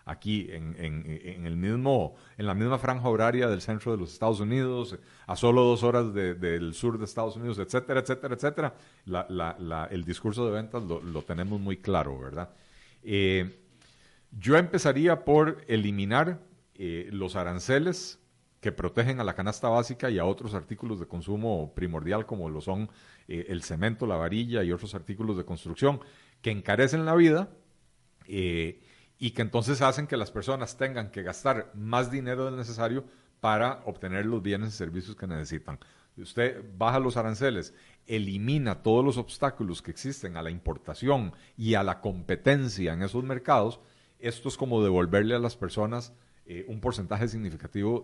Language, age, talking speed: Spanish, 40-59, 155 wpm